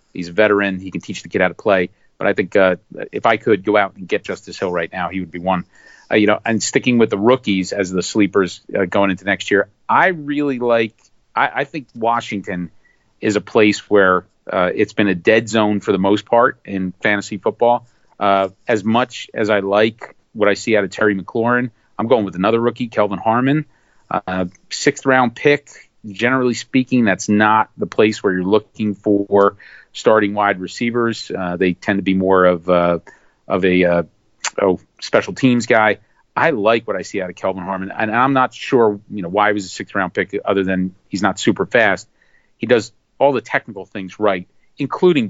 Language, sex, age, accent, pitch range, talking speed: English, male, 40-59, American, 95-115 Hz, 210 wpm